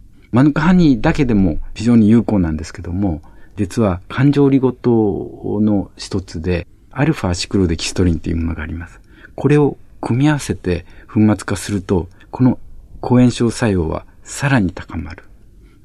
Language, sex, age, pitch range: Japanese, male, 50-69, 90-115 Hz